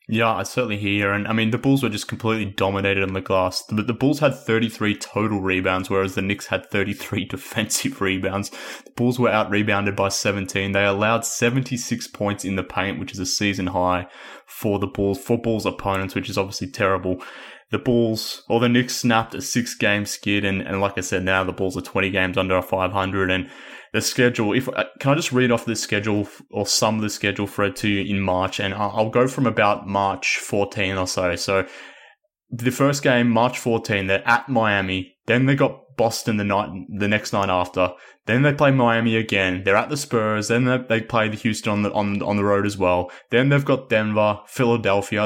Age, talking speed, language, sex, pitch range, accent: 20-39, 210 wpm, English, male, 95-115 Hz, Australian